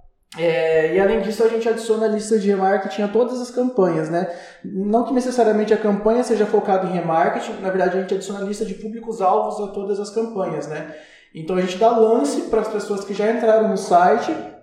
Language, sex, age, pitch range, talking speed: Portuguese, male, 20-39, 170-210 Hz, 215 wpm